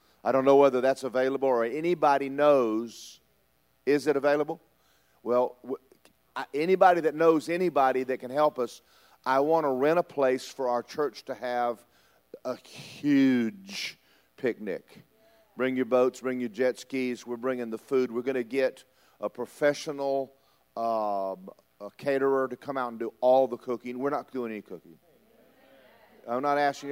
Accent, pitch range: American, 120-145 Hz